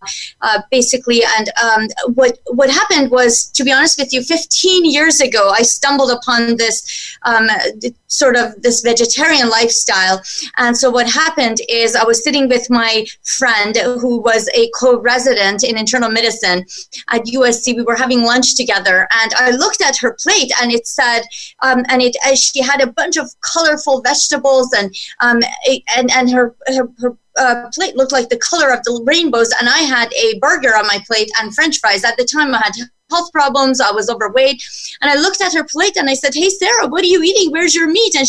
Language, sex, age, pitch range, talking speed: English, female, 30-49, 230-275 Hz, 200 wpm